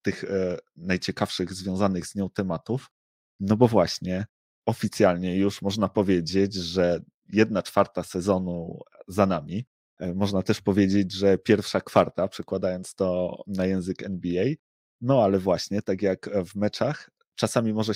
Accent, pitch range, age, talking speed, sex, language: native, 90-105 Hz, 30-49, 130 wpm, male, Polish